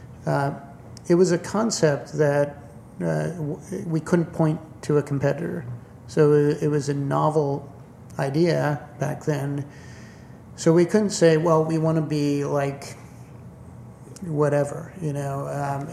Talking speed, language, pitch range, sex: 130 wpm, English, 135-155 Hz, male